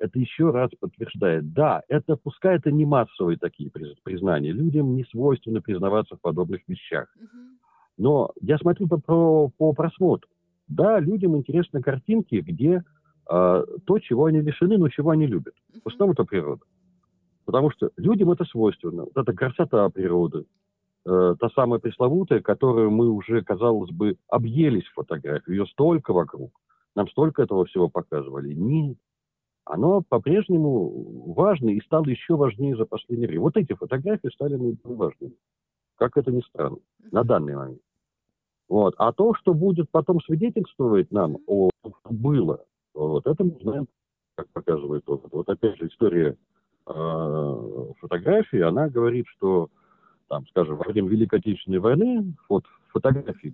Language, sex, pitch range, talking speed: Russian, male, 100-165 Hz, 150 wpm